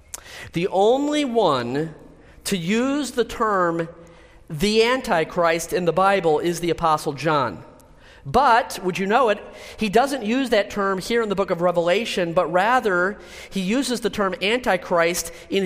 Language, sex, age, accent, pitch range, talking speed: English, male, 40-59, American, 160-210 Hz, 155 wpm